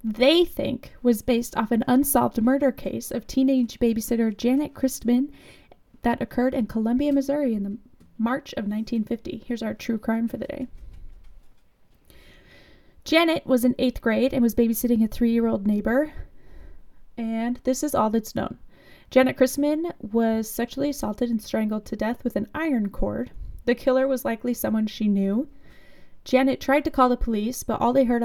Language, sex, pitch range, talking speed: English, female, 220-265 Hz, 165 wpm